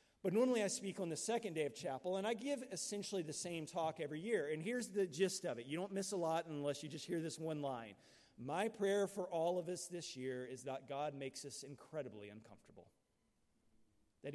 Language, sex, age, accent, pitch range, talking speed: English, male, 40-59, American, 130-180 Hz, 220 wpm